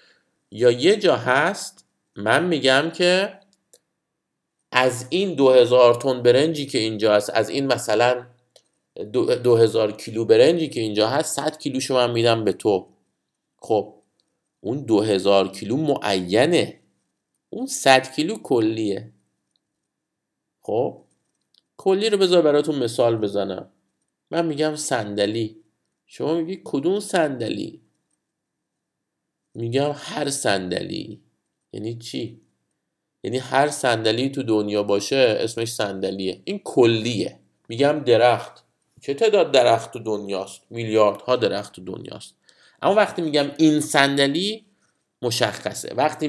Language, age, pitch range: Persian, 50-69, 115-155 Hz